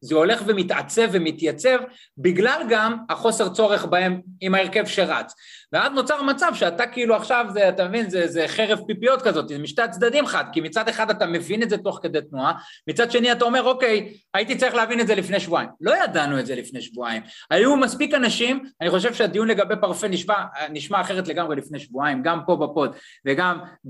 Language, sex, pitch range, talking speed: Hebrew, male, 160-225 Hz, 190 wpm